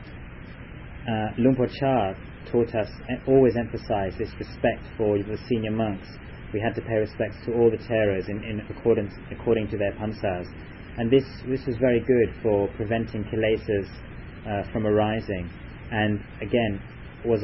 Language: English